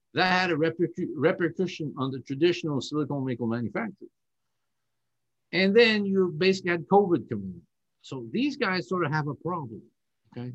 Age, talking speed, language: 50-69, 150 wpm, English